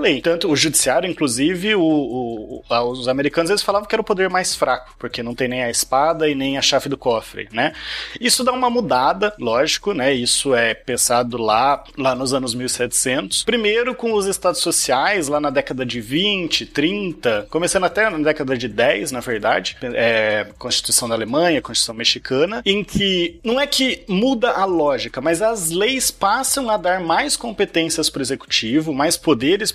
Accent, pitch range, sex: Brazilian, 145-195 Hz, male